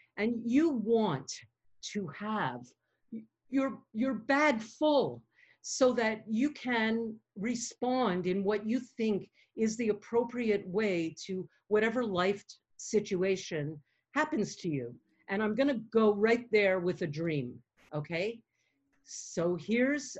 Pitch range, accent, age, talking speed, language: 170-230 Hz, American, 50-69, 125 wpm, English